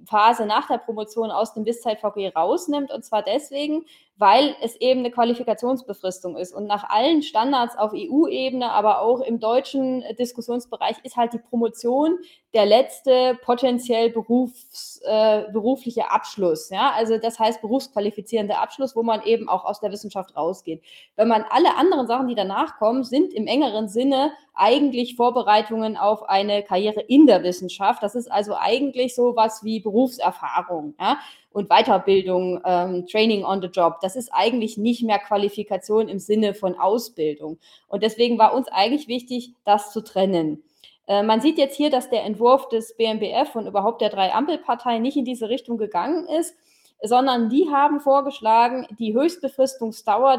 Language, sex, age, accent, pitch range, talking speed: English, female, 20-39, German, 210-255 Hz, 165 wpm